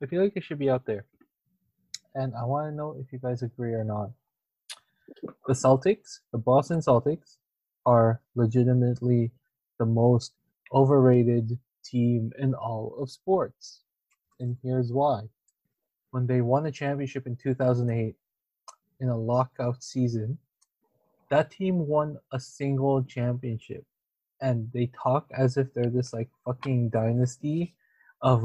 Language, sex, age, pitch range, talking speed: English, male, 20-39, 120-140 Hz, 135 wpm